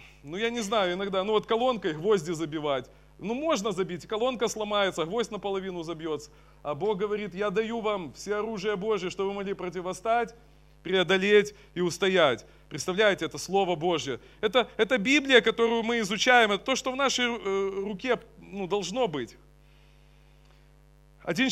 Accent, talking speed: native, 150 wpm